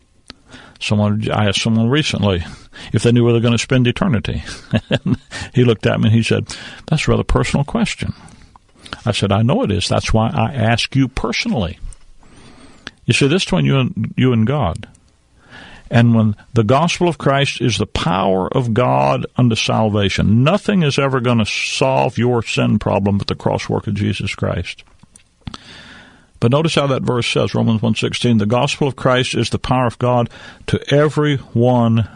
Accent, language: American, English